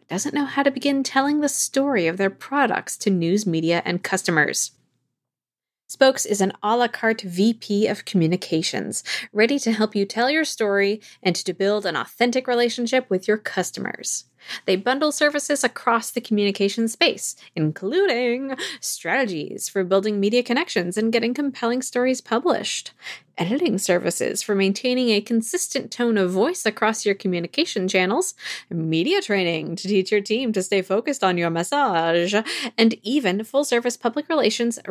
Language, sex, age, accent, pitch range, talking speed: English, female, 20-39, American, 195-260 Hz, 155 wpm